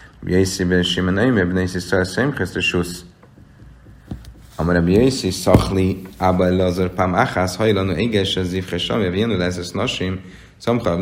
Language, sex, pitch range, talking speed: Hungarian, male, 85-110 Hz, 110 wpm